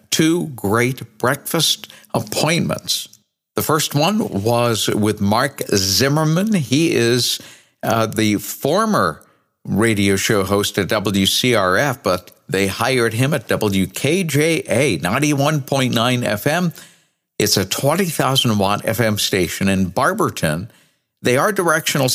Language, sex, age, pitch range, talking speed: English, male, 60-79, 105-145 Hz, 105 wpm